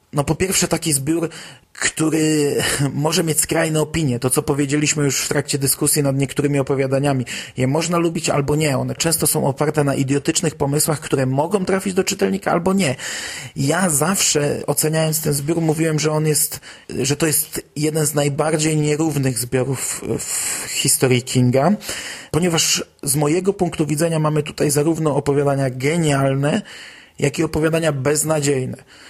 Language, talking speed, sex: Polish, 150 wpm, male